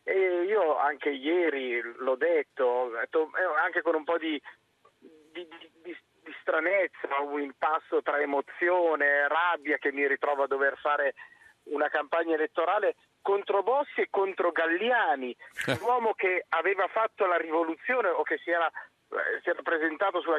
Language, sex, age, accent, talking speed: Italian, male, 40-59, native, 145 wpm